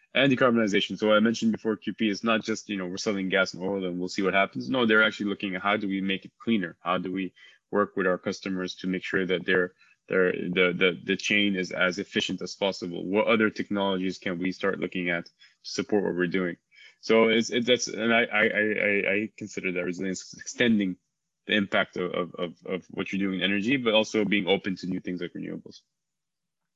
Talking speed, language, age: 225 wpm, English, 20-39